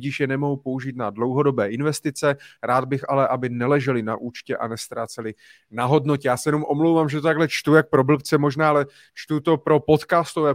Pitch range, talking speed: 125-155 Hz, 200 wpm